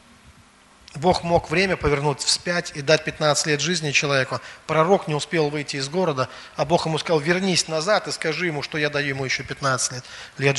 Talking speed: 195 wpm